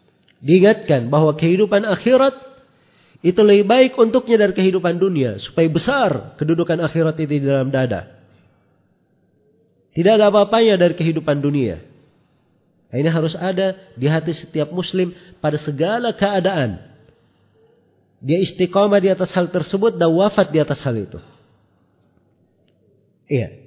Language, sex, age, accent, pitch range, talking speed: Indonesian, male, 40-59, native, 135-175 Hz, 125 wpm